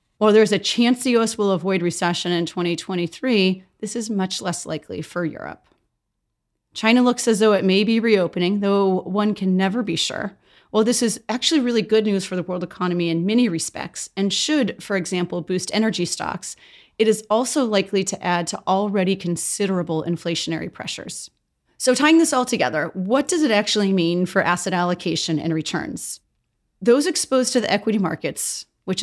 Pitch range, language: 175-220 Hz, English